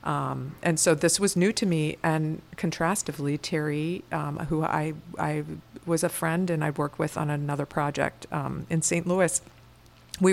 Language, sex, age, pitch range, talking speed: English, female, 50-69, 145-165 Hz, 180 wpm